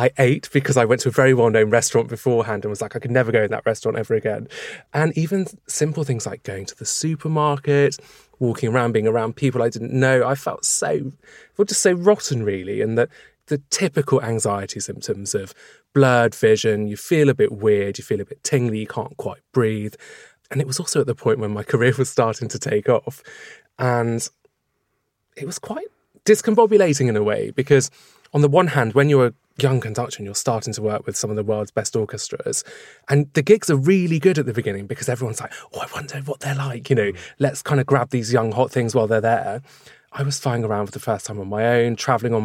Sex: male